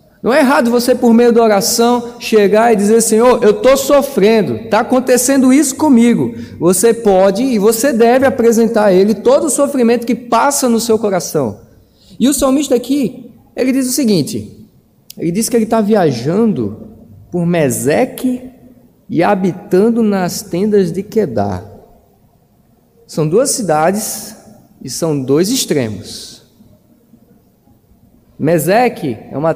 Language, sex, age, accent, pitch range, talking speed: Portuguese, male, 20-39, Brazilian, 150-225 Hz, 135 wpm